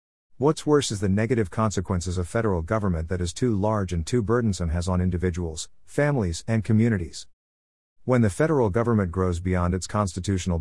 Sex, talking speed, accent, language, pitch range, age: male, 170 wpm, American, English, 90-110 Hz, 50-69